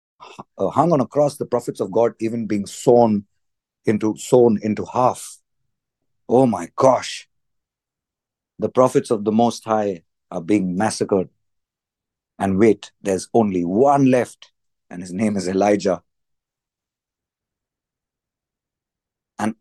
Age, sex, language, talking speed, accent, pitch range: 50-69, male, English, 120 wpm, Indian, 95-115 Hz